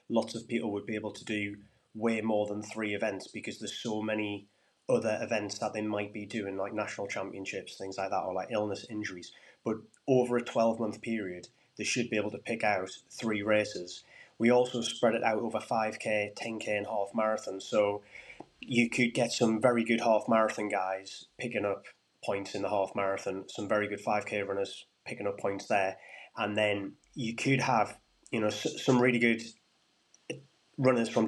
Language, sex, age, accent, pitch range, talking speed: English, male, 20-39, British, 105-115 Hz, 190 wpm